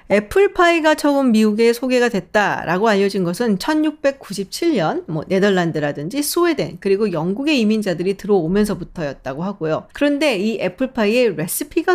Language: Korean